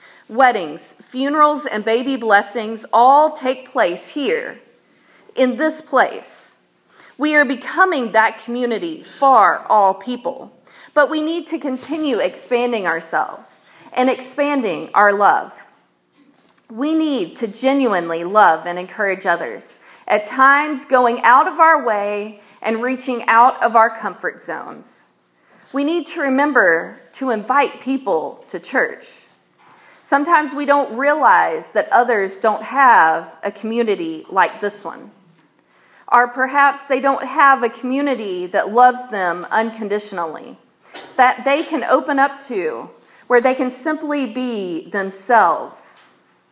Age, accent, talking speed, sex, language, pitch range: 40-59, American, 125 wpm, female, English, 225-285 Hz